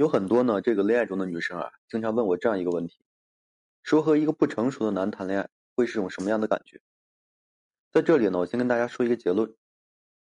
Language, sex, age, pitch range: Chinese, male, 20-39, 95-130 Hz